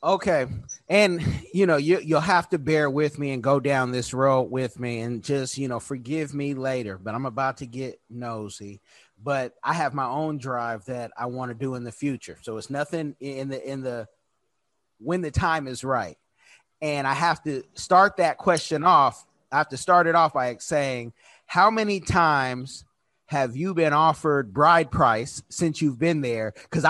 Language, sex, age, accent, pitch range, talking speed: English, male, 30-49, American, 130-190 Hz, 190 wpm